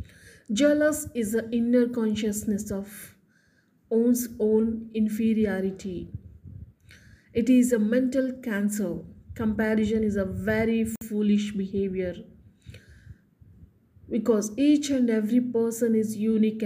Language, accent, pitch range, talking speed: Telugu, native, 205-245 Hz, 95 wpm